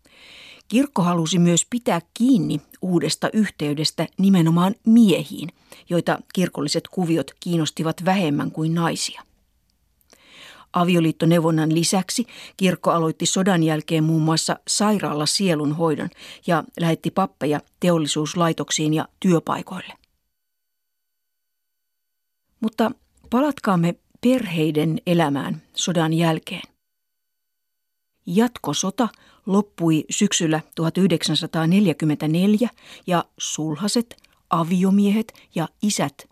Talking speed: 75 wpm